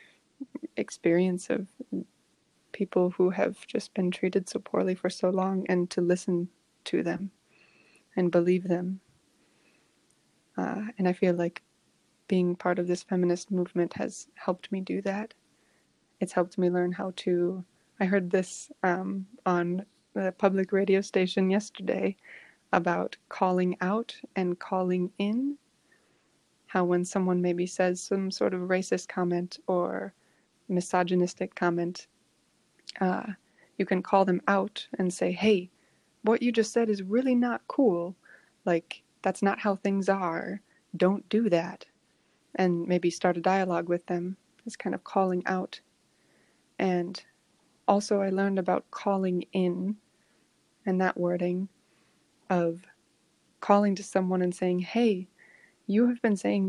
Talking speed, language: 140 wpm, German